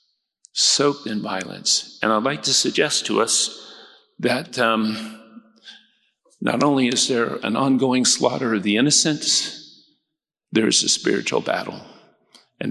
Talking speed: 130 wpm